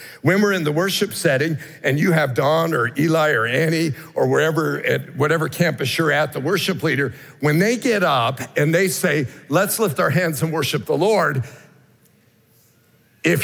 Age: 50-69